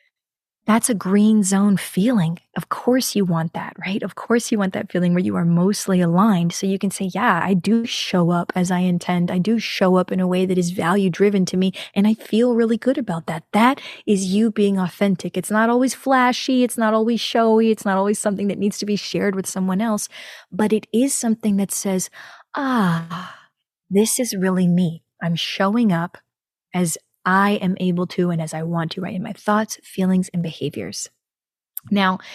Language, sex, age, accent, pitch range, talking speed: English, female, 20-39, American, 180-225 Hz, 205 wpm